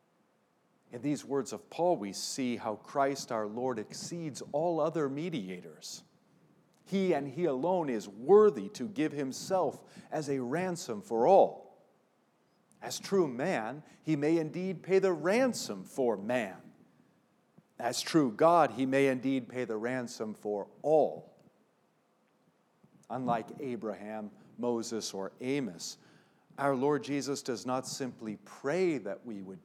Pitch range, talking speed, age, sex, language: 115-150 Hz, 135 wpm, 50-69, male, English